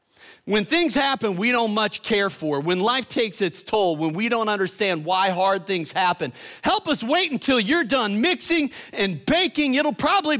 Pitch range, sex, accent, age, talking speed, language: 150-220 Hz, male, American, 50-69, 185 wpm, English